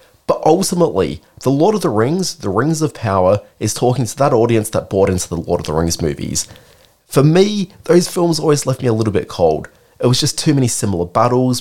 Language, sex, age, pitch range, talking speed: English, male, 20-39, 95-155 Hz, 220 wpm